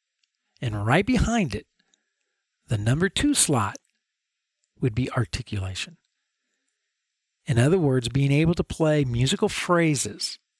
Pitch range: 120-165 Hz